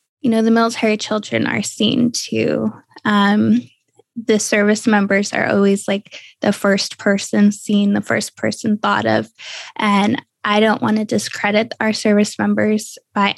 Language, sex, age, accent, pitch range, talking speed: English, female, 10-29, American, 195-225 Hz, 150 wpm